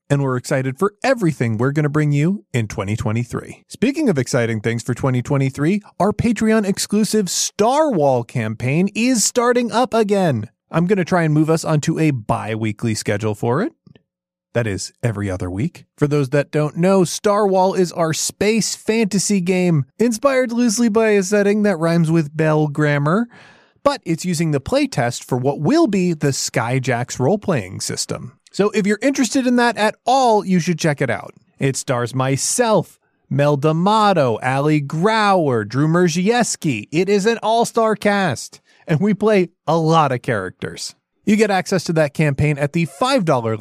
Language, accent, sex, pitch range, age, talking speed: English, American, male, 135-210 Hz, 30-49, 165 wpm